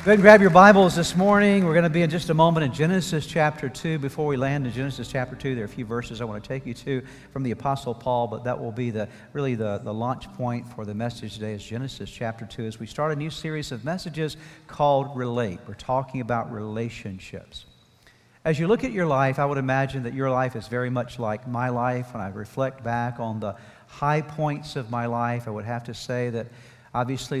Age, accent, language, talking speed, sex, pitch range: 50-69, American, English, 240 wpm, male, 115-140 Hz